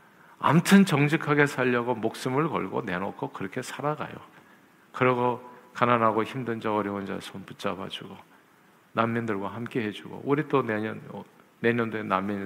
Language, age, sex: Korean, 50-69, male